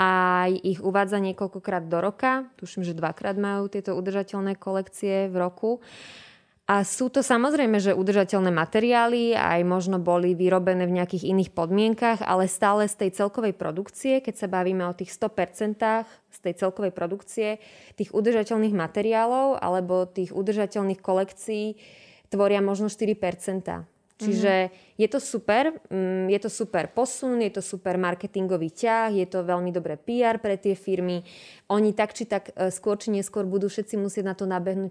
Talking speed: 155 wpm